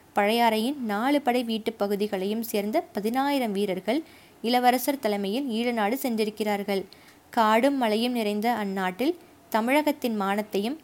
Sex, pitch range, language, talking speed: female, 215-255 Hz, Tamil, 105 wpm